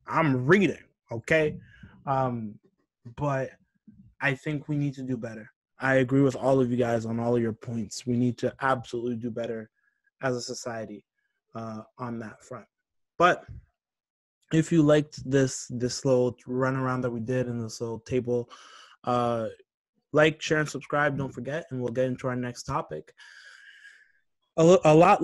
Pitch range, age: 130-175 Hz, 20-39